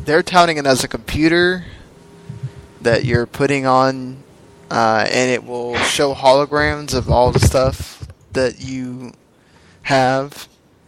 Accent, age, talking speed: American, 10-29, 125 wpm